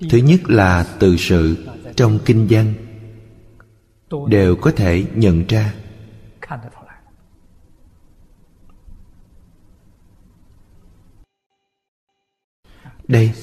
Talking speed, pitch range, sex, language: 65 wpm, 90-115 Hz, male, Vietnamese